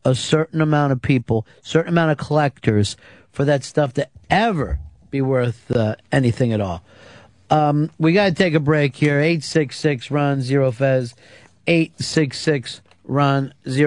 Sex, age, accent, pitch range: male, 50-69, American, 120-150 Hz